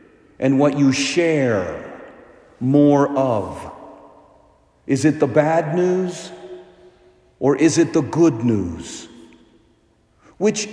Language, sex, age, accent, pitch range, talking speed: English, male, 50-69, American, 120-170 Hz, 100 wpm